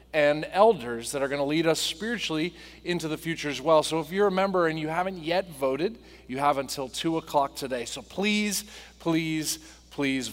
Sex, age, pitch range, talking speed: male, 30-49, 140-180 Hz, 200 wpm